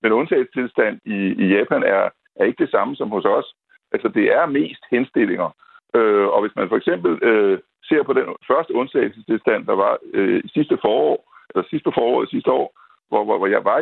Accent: native